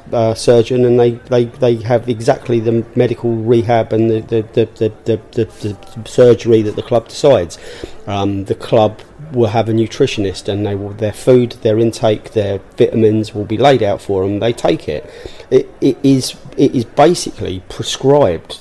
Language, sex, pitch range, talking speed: English, male, 95-115 Hz, 180 wpm